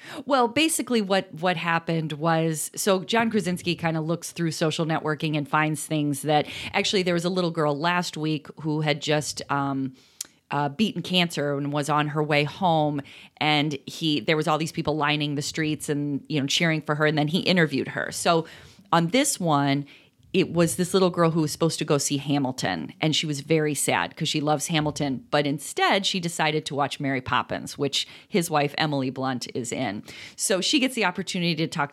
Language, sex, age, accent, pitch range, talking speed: English, female, 30-49, American, 150-190 Hz, 205 wpm